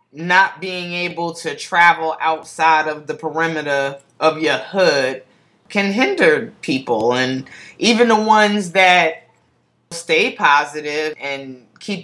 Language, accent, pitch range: English, American, 155-180 Hz